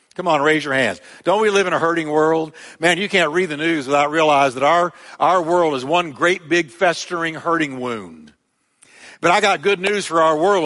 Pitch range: 165-210 Hz